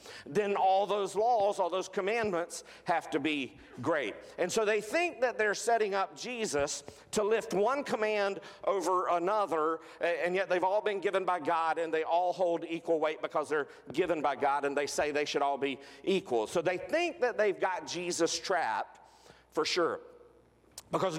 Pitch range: 145-200 Hz